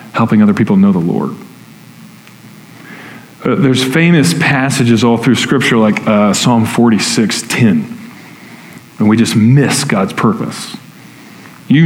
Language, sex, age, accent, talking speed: English, male, 40-59, American, 125 wpm